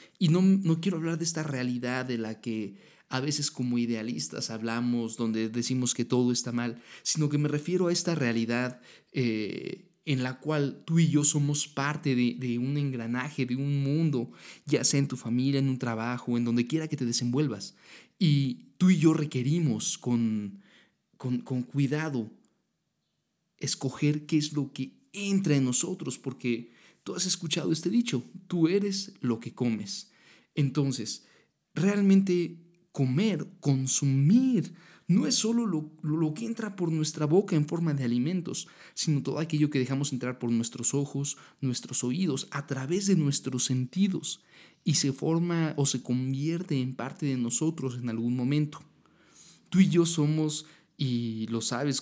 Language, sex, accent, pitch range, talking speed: Spanish, male, Mexican, 125-160 Hz, 165 wpm